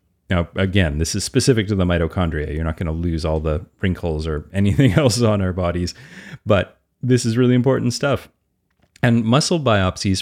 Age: 30-49